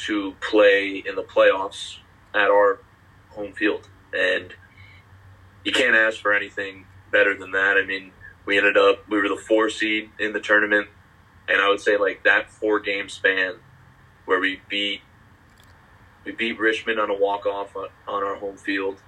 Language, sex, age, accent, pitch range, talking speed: English, male, 30-49, American, 95-110 Hz, 165 wpm